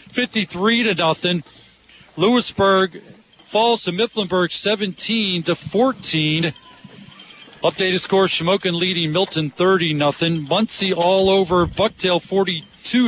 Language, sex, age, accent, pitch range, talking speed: English, male, 40-59, American, 165-195 Hz, 100 wpm